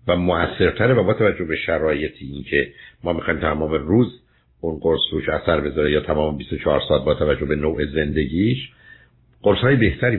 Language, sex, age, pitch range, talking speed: Persian, male, 60-79, 80-120 Hz, 165 wpm